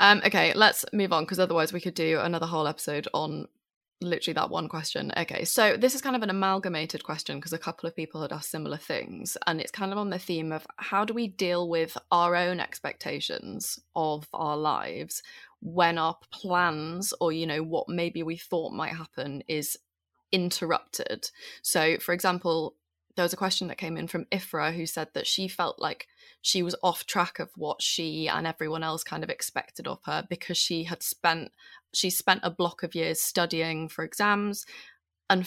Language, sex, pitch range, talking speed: English, female, 160-180 Hz, 195 wpm